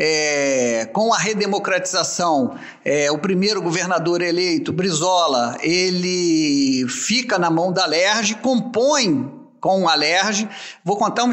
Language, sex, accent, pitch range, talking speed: Portuguese, male, Brazilian, 175-230 Hz, 120 wpm